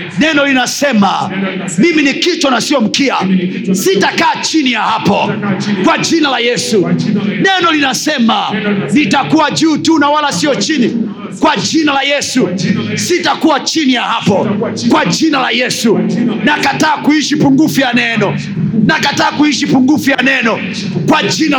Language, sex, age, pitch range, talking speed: Swahili, male, 40-59, 215-300 Hz, 140 wpm